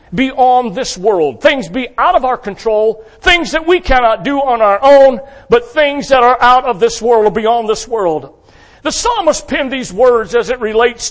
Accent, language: American, English